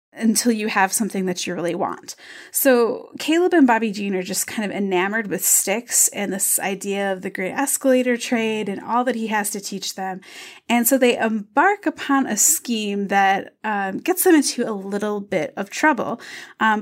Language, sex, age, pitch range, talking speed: English, female, 20-39, 195-250 Hz, 195 wpm